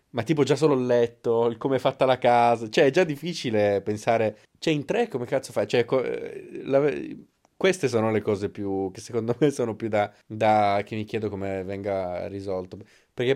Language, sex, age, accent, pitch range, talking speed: Italian, male, 20-39, native, 95-120 Hz, 200 wpm